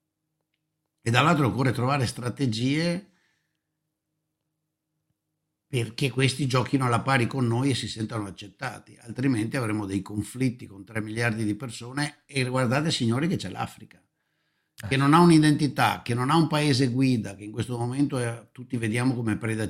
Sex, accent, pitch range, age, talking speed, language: male, native, 105-135 Hz, 60-79, 150 wpm, Italian